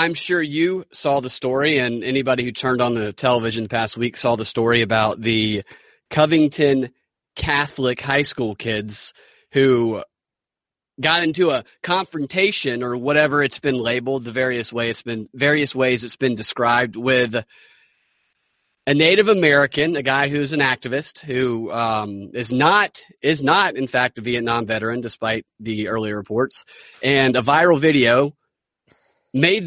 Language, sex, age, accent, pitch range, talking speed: English, male, 30-49, American, 115-145 Hz, 150 wpm